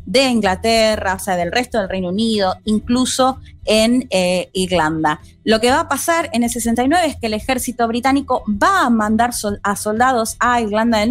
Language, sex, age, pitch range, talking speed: Spanish, female, 20-39, 195-260 Hz, 185 wpm